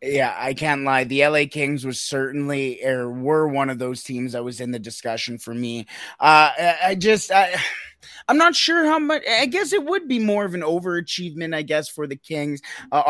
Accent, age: American, 20-39